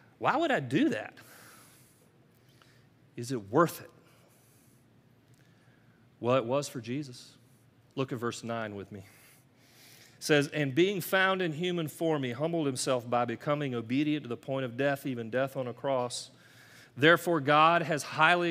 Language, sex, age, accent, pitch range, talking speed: English, male, 40-59, American, 120-155 Hz, 155 wpm